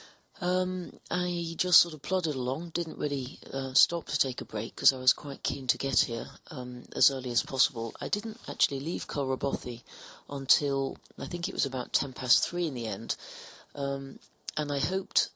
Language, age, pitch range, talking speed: English, 40-59, 125-150 Hz, 190 wpm